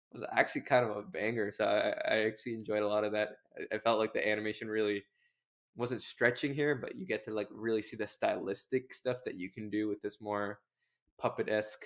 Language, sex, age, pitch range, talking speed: English, male, 20-39, 105-125 Hz, 220 wpm